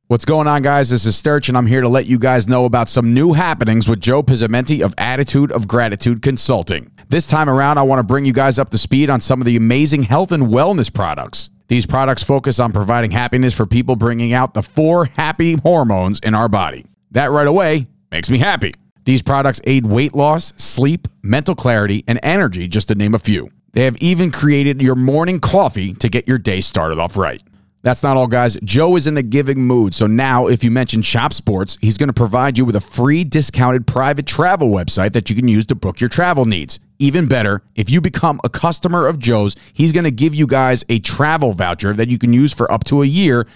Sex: male